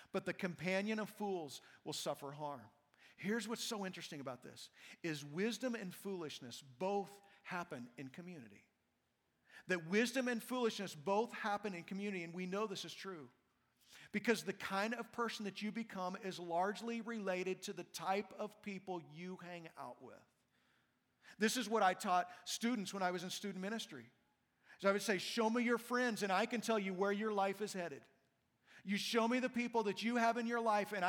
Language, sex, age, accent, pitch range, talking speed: English, male, 50-69, American, 185-225 Hz, 190 wpm